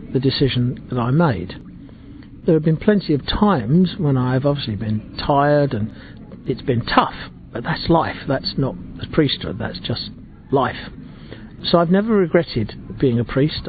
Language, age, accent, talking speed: English, 50-69, British, 160 wpm